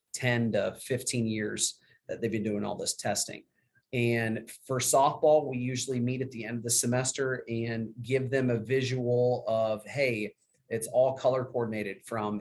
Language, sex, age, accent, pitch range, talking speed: English, male, 30-49, American, 115-135 Hz, 170 wpm